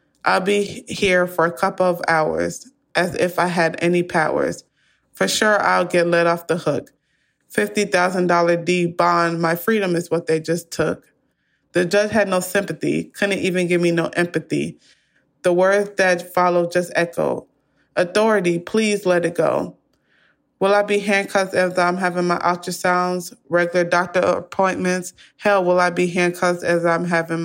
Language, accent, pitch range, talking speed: English, American, 170-185 Hz, 160 wpm